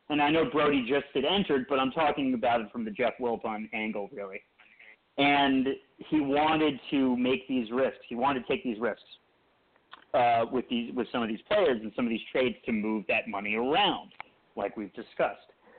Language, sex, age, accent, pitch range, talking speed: English, male, 30-49, American, 120-165 Hz, 200 wpm